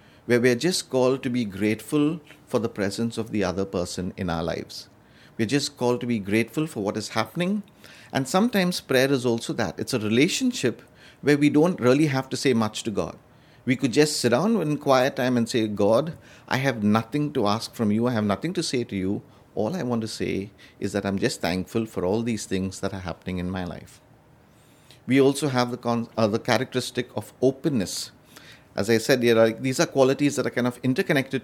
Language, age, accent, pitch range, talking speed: English, 50-69, Indian, 105-140 Hz, 215 wpm